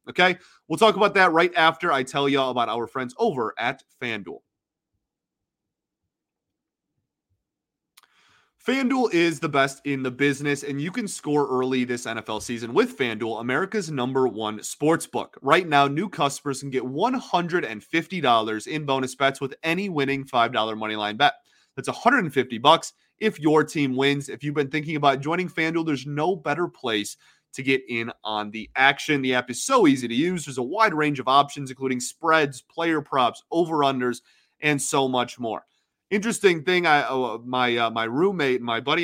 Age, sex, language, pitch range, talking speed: 30-49, male, English, 125-160 Hz, 170 wpm